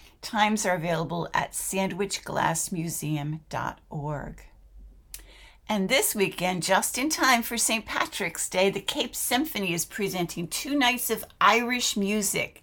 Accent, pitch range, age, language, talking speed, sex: American, 170-220 Hz, 60-79, English, 120 wpm, female